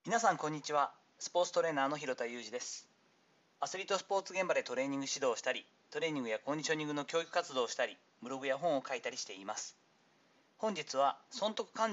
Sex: male